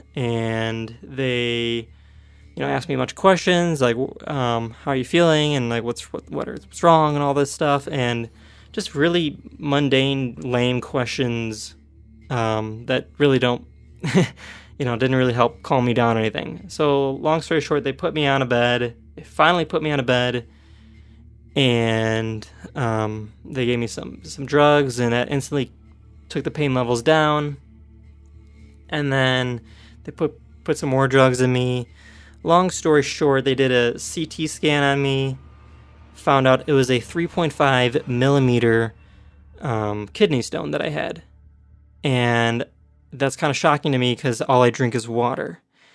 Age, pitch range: 20-39, 115-145 Hz